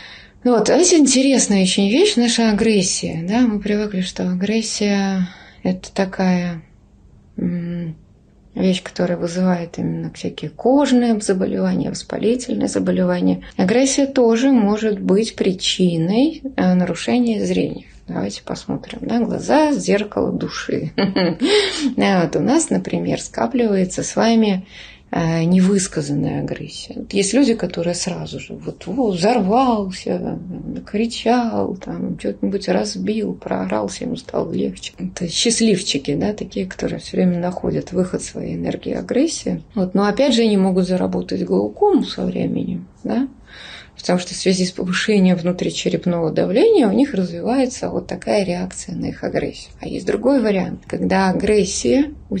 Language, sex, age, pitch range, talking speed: Russian, female, 20-39, 175-230 Hz, 125 wpm